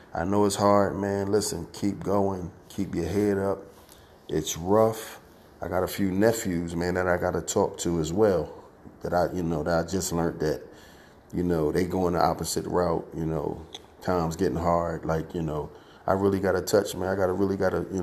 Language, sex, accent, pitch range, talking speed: English, male, American, 85-100 Hz, 205 wpm